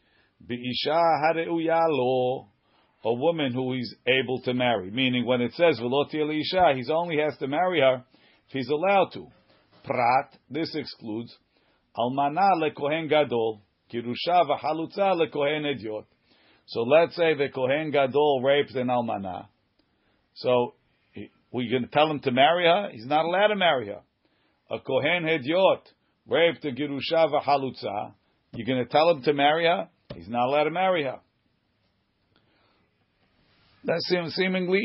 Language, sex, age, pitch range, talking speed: English, male, 50-69, 125-155 Hz, 120 wpm